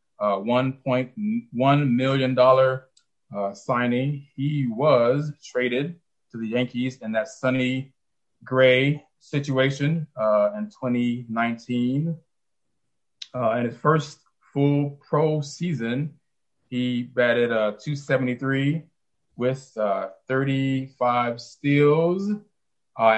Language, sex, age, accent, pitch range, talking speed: English, male, 20-39, American, 120-140 Hz, 95 wpm